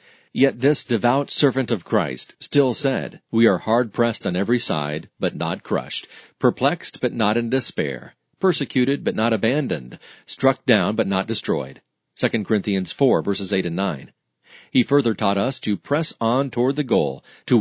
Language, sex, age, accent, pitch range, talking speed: English, male, 40-59, American, 105-135 Hz, 165 wpm